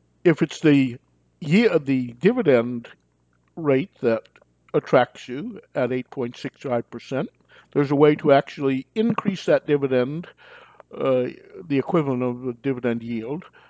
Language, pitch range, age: English, 120-150 Hz, 50-69